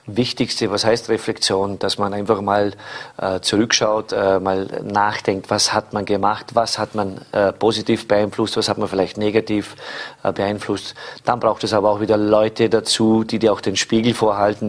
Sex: male